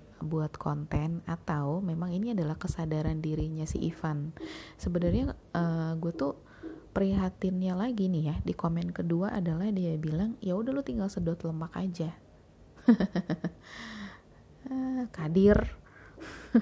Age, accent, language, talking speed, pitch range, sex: 20-39, native, Indonesian, 115 wpm, 160-200 Hz, female